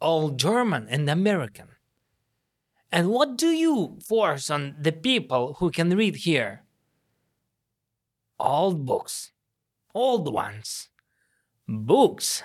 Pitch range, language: 135-210 Hz, English